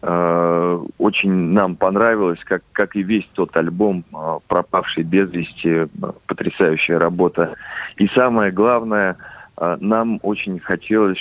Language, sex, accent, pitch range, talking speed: Russian, male, native, 85-110 Hz, 105 wpm